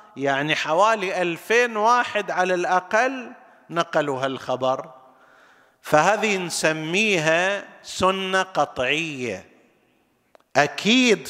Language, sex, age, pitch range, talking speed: Arabic, male, 50-69, 140-205 Hz, 70 wpm